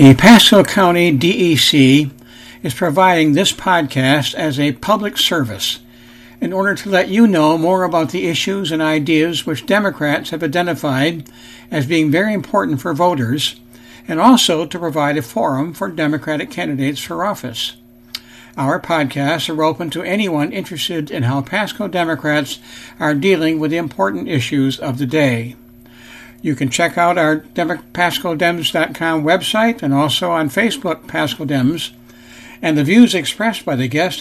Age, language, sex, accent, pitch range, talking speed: 60-79, English, male, American, 135-170 Hz, 150 wpm